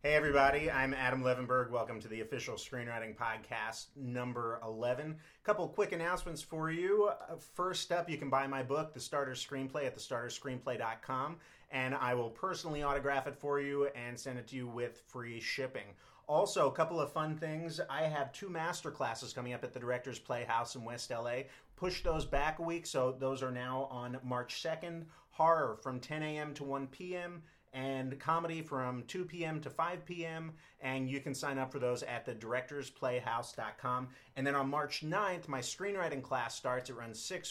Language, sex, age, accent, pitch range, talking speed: English, male, 30-49, American, 125-155 Hz, 185 wpm